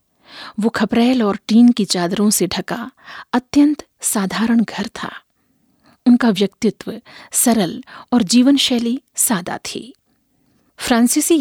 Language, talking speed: Hindi, 110 wpm